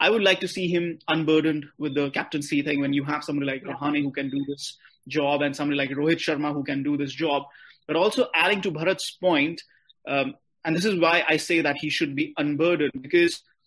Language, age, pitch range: English, 30-49, 150-195 Hz